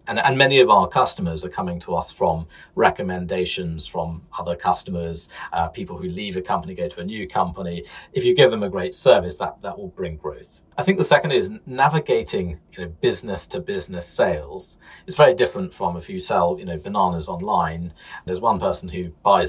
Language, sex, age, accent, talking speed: English, male, 40-59, British, 185 wpm